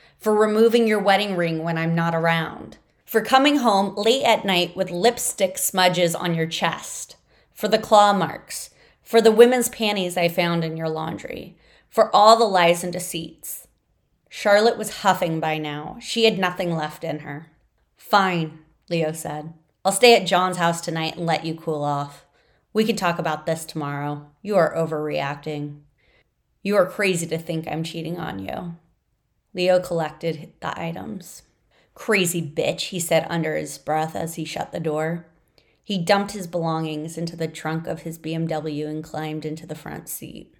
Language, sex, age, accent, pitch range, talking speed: English, female, 30-49, American, 160-195 Hz, 170 wpm